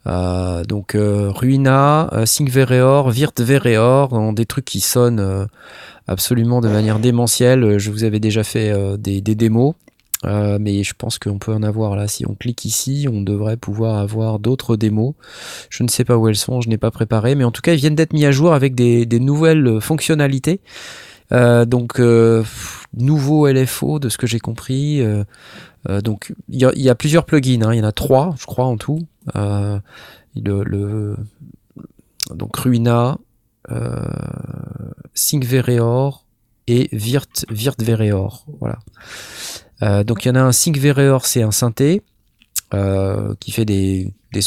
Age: 20-39